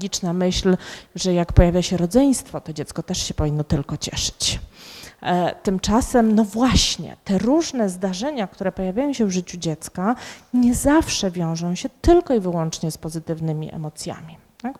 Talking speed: 145 wpm